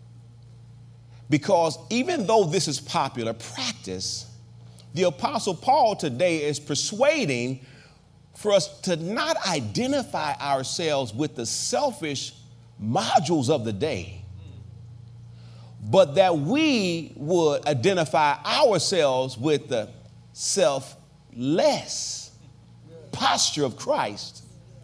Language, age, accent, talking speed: English, 40-59, American, 90 wpm